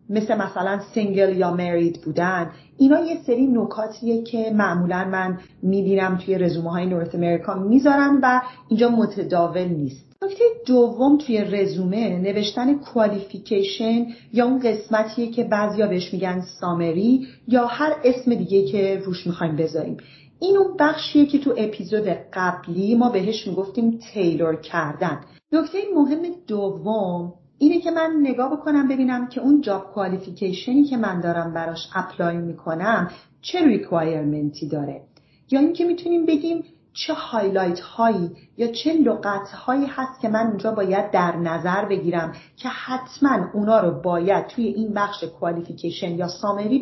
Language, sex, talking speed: Persian, female, 140 wpm